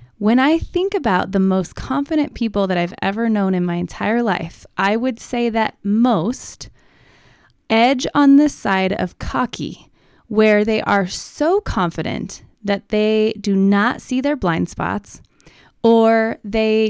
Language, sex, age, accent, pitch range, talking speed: English, female, 20-39, American, 180-225 Hz, 150 wpm